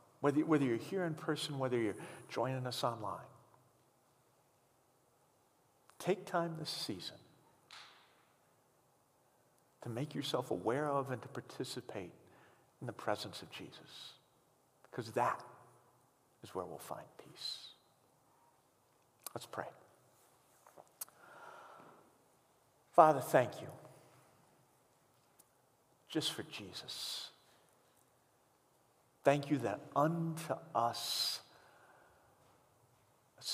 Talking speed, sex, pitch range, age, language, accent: 90 wpm, male, 125-155 Hz, 50-69, English, American